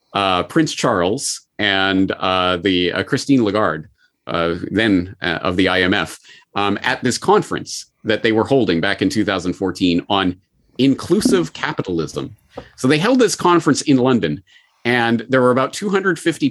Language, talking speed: English, 150 wpm